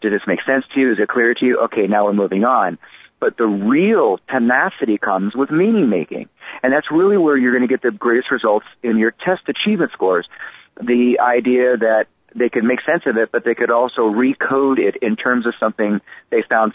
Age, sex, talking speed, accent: 50-69, male, 215 wpm, American